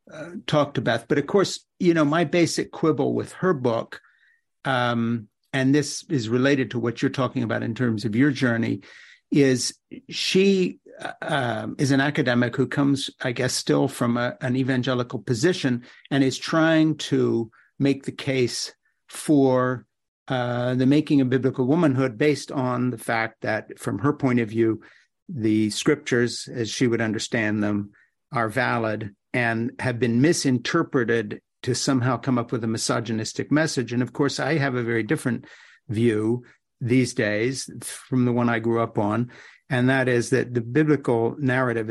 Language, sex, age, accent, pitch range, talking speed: English, male, 50-69, American, 120-140 Hz, 165 wpm